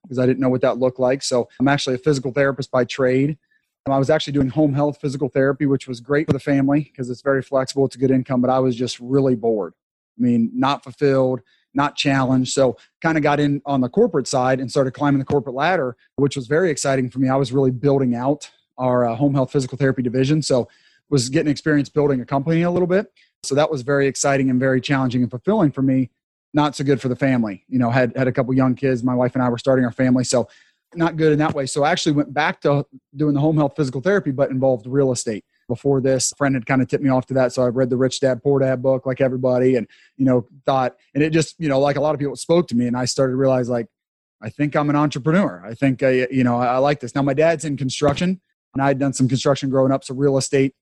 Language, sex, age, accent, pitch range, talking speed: English, male, 30-49, American, 130-145 Hz, 265 wpm